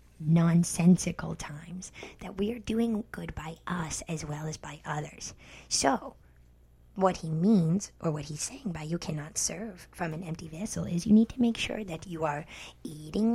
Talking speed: 180 wpm